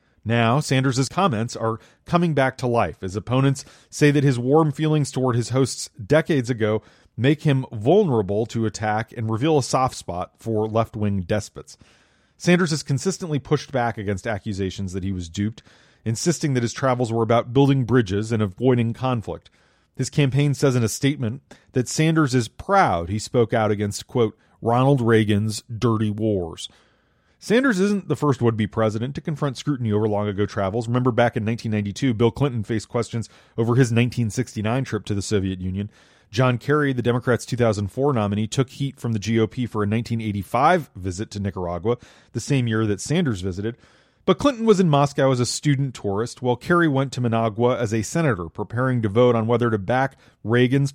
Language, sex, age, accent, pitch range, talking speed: English, male, 40-59, American, 110-135 Hz, 175 wpm